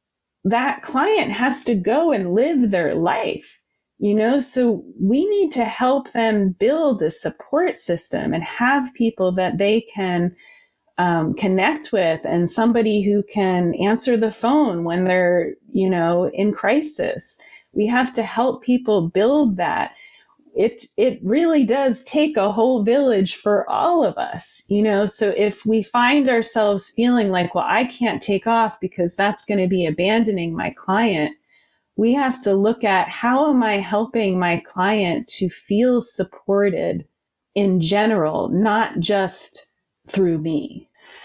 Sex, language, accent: female, English, American